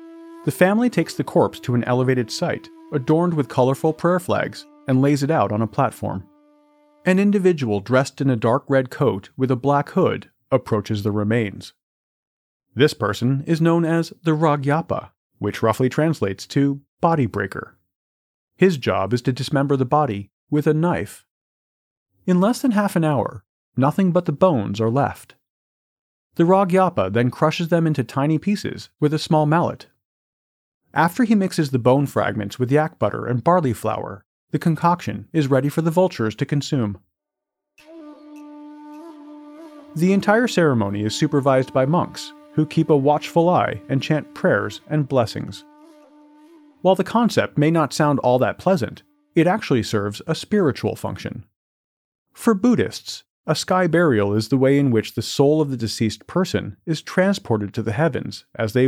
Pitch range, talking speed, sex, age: 115-175 Hz, 160 wpm, male, 40-59